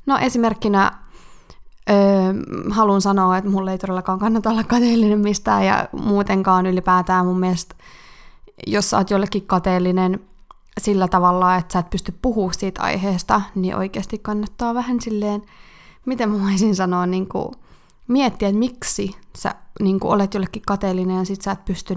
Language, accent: Finnish, native